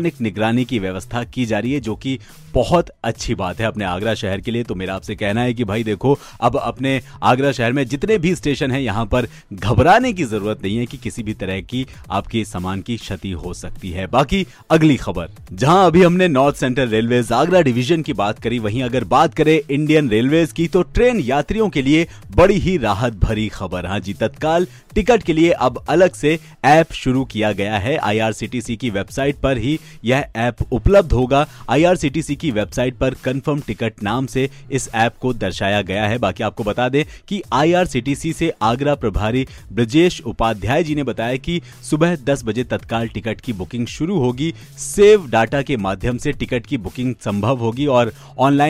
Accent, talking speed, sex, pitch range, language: native, 85 wpm, male, 110-150 Hz, Hindi